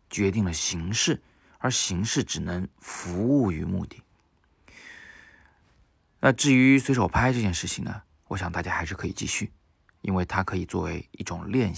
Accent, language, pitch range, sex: native, Chinese, 85-105 Hz, male